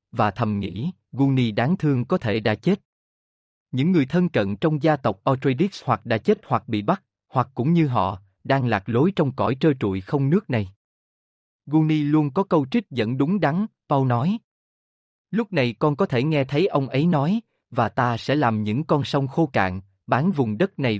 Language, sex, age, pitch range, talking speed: Vietnamese, male, 20-39, 115-155 Hz, 205 wpm